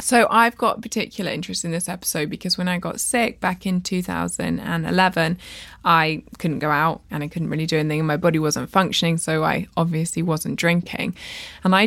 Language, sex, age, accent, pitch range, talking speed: English, female, 20-39, British, 170-195 Hz, 190 wpm